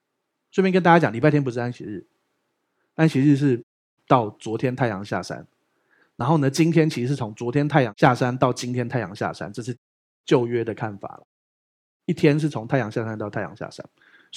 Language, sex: Chinese, male